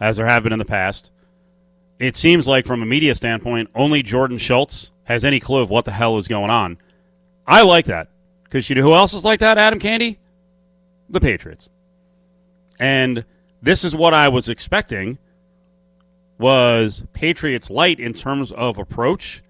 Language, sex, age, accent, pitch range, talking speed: English, male, 40-59, American, 120-180 Hz, 170 wpm